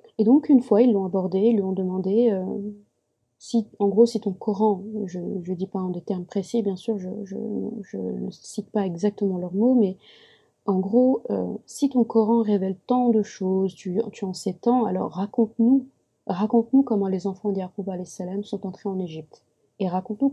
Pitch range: 190-225 Hz